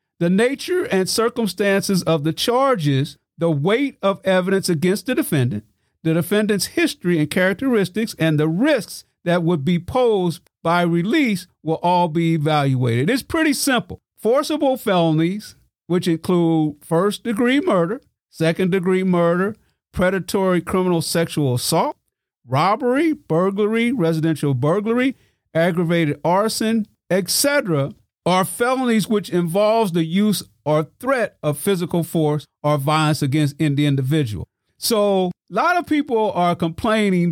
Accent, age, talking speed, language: American, 50-69, 125 wpm, English